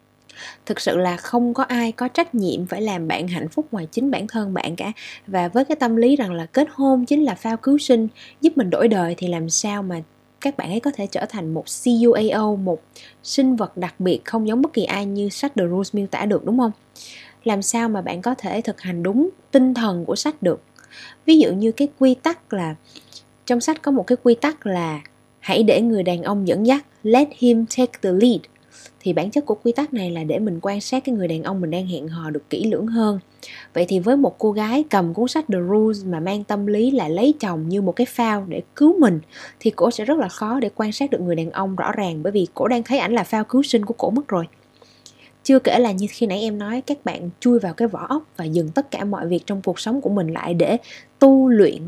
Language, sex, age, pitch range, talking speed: Vietnamese, female, 20-39, 185-250 Hz, 255 wpm